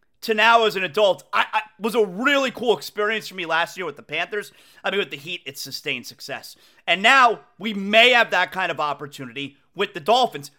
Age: 30-49